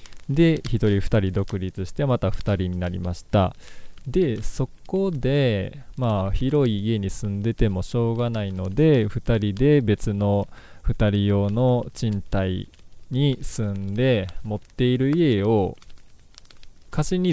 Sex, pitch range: male, 95-130 Hz